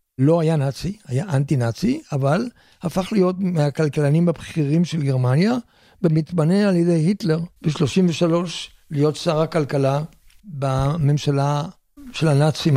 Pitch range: 145-175 Hz